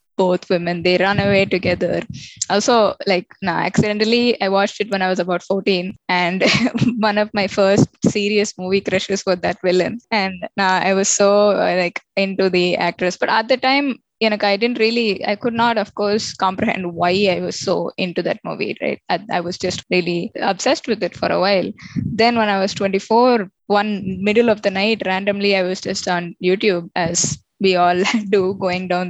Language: Tamil